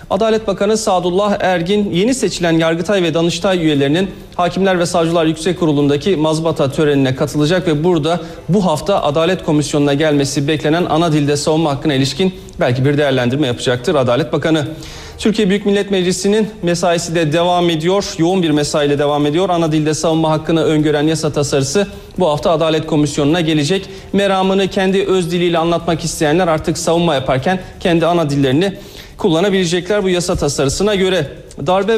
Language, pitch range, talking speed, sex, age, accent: Turkish, 155-190 Hz, 150 wpm, male, 40-59, native